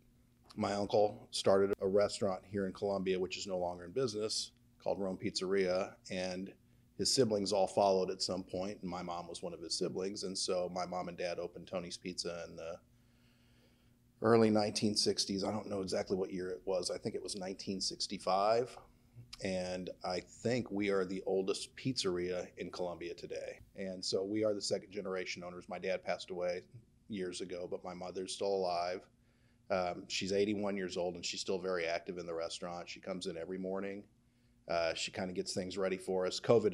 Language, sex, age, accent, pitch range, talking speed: English, male, 40-59, American, 90-120 Hz, 190 wpm